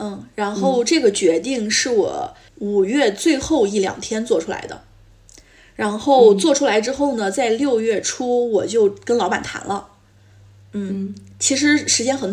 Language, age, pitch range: Chinese, 20-39, 165-270 Hz